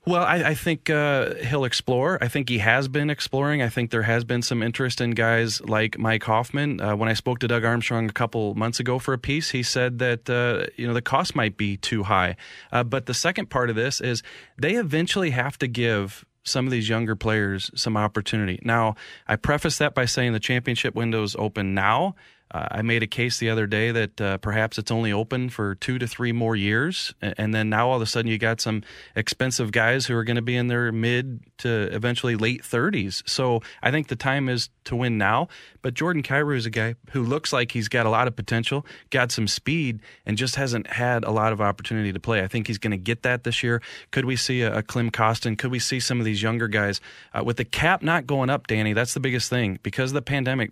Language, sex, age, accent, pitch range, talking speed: English, male, 30-49, American, 110-130 Hz, 240 wpm